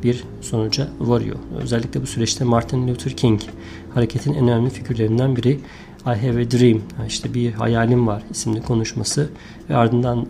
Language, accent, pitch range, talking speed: Turkish, native, 115-135 Hz, 150 wpm